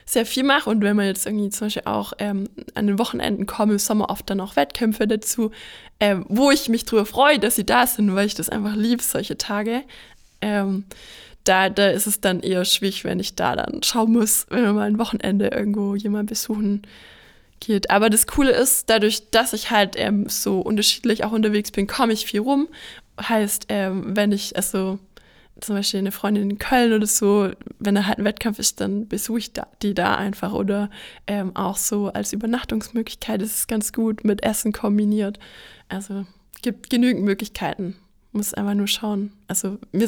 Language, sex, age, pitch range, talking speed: German, female, 20-39, 205-235 Hz, 190 wpm